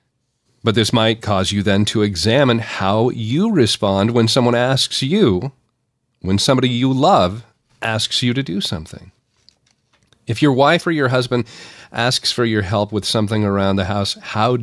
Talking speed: 165 wpm